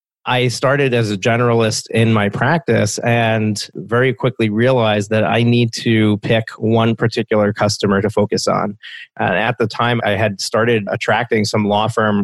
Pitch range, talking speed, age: 110-130 Hz, 165 wpm, 30-49